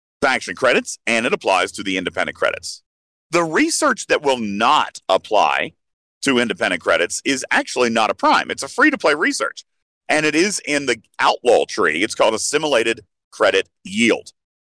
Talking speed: 160 wpm